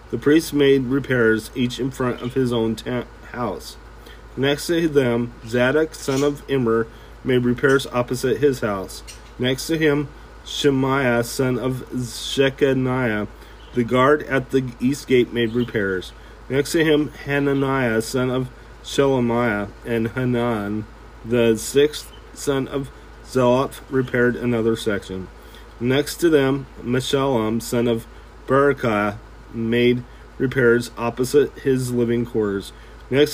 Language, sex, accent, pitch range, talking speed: English, male, American, 115-135 Hz, 125 wpm